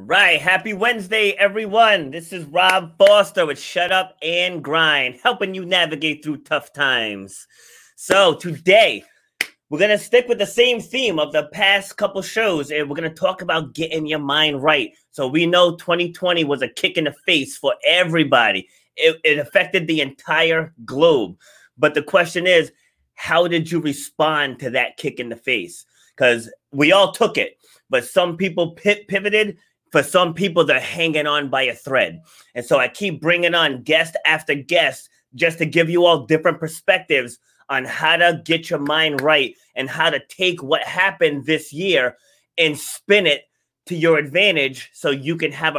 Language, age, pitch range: English, 30-49, 150-195 Hz